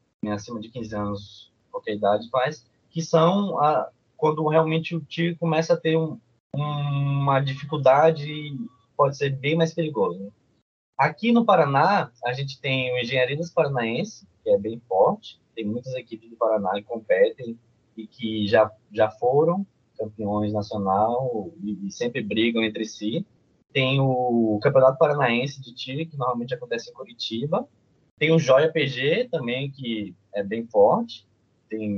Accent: Brazilian